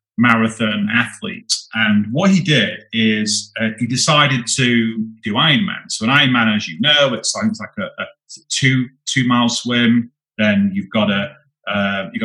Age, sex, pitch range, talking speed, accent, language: 40-59, male, 115-150 Hz, 170 wpm, British, English